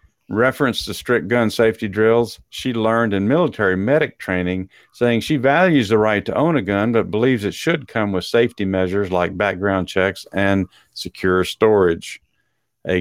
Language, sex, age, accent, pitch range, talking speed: English, male, 50-69, American, 95-120 Hz, 165 wpm